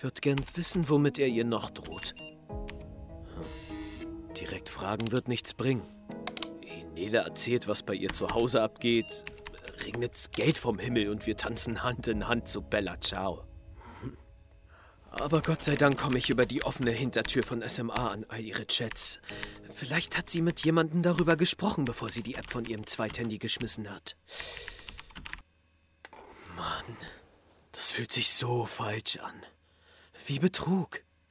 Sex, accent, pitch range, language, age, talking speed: male, German, 95-135 Hz, German, 40-59, 150 wpm